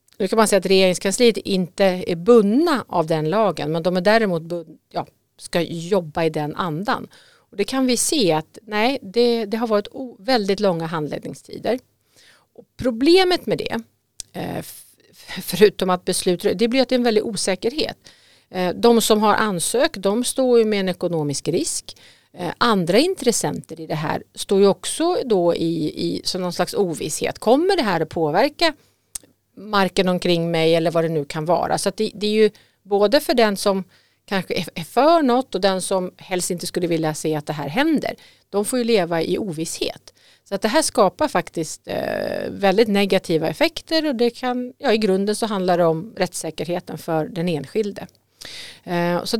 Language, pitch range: Swedish, 170-235 Hz